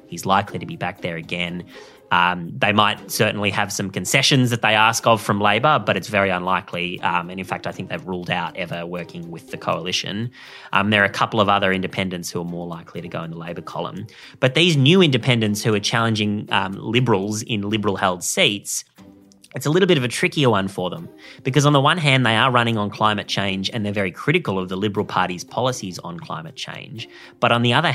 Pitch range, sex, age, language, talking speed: 90-115 Hz, male, 20-39, English, 225 wpm